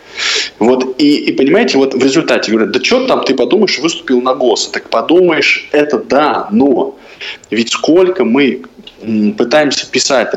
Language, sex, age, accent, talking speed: Russian, male, 20-39, native, 150 wpm